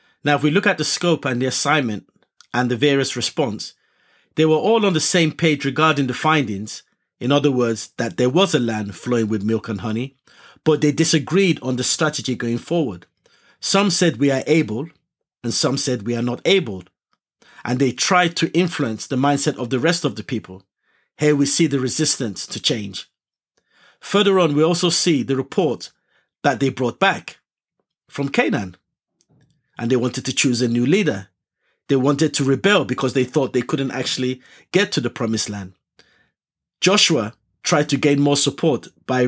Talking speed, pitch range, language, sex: 185 wpm, 120-155 Hz, English, male